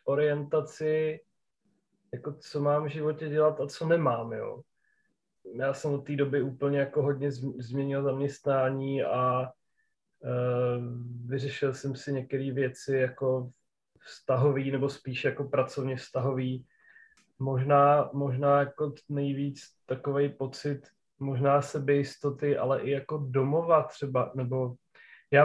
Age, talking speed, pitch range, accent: 30-49, 120 wpm, 130-145 Hz, native